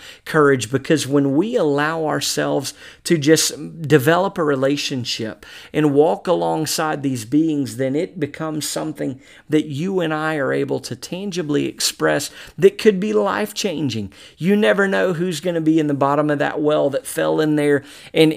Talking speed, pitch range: 170 wpm, 135-160 Hz